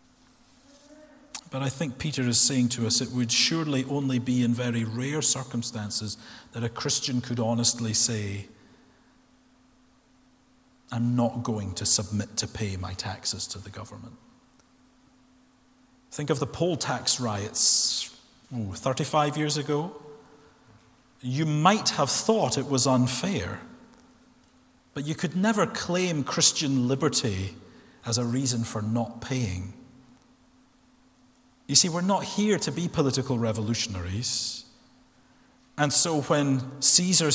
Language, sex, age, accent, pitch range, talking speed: English, male, 40-59, British, 120-170 Hz, 125 wpm